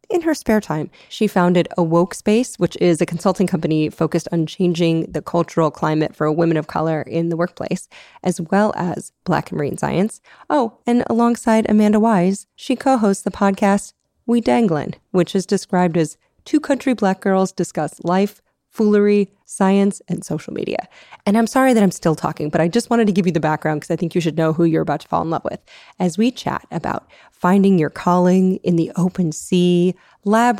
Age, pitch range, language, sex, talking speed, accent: 20-39, 170-210 Hz, English, female, 200 wpm, American